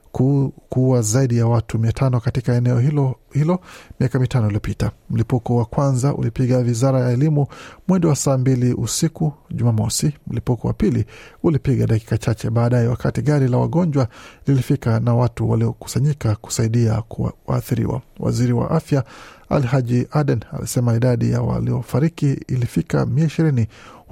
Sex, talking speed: male, 135 wpm